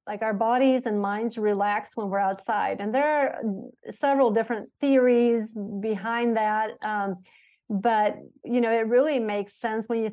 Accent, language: American, English